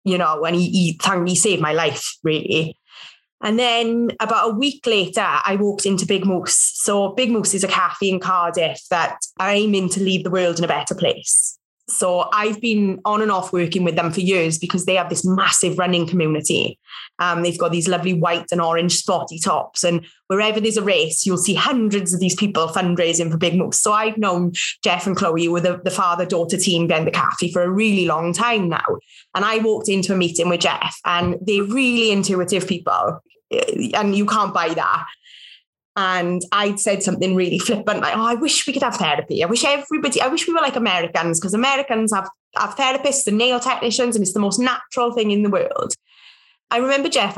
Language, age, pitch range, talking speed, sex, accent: English, 20-39, 180-235 Hz, 210 wpm, female, British